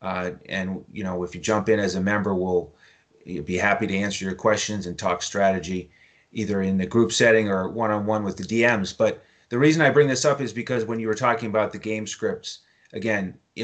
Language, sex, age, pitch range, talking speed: English, male, 30-49, 100-120 Hz, 220 wpm